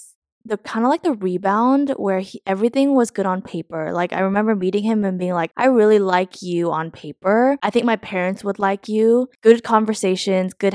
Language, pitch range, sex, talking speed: English, 180-225 Hz, female, 200 wpm